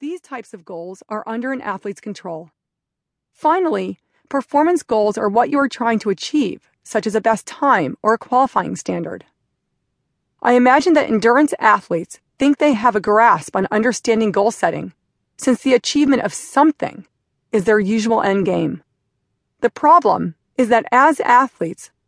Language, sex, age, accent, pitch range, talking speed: English, female, 40-59, American, 210-275 Hz, 160 wpm